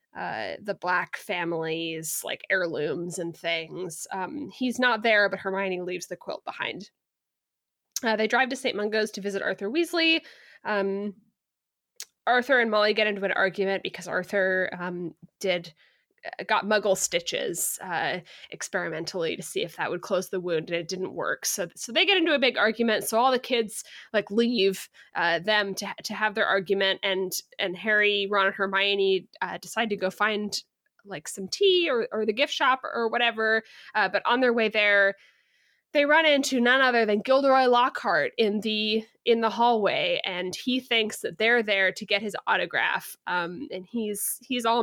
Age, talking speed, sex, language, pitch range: 20-39, 175 wpm, female, English, 190-235 Hz